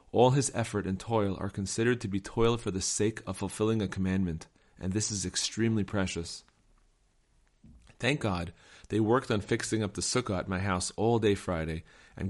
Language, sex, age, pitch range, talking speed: English, male, 30-49, 95-115 Hz, 185 wpm